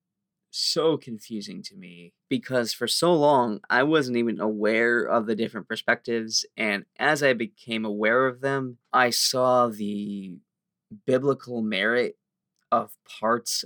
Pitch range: 105-135 Hz